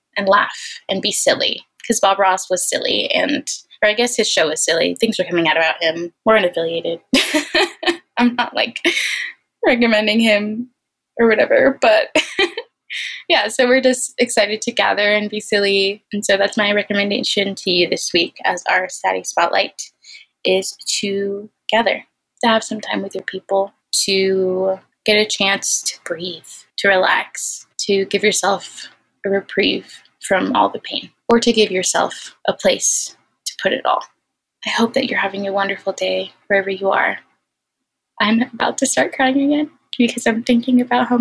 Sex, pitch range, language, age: female, 200-245 Hz, English, 20-39